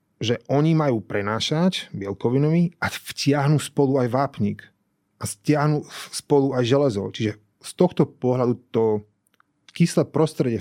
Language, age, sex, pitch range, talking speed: Slovak, 30-49, male, 115-150 Hz, 125 wpm